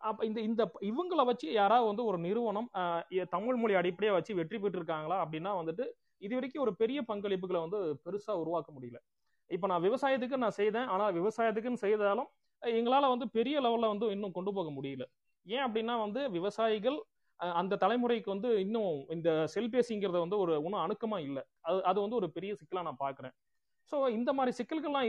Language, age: Tamil, 30-49